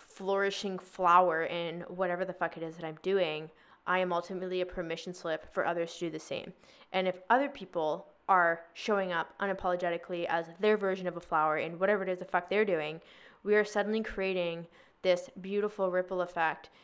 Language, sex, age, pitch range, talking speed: English, female, 20-39, 170-195 Hz, 190 wpm